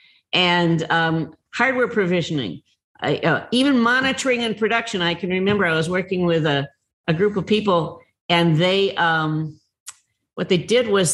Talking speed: 150 wpm